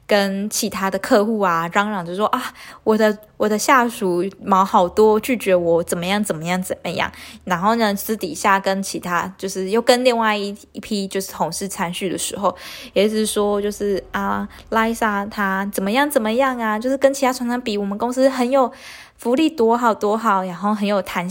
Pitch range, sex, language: 190-240 Hz, female, Chinese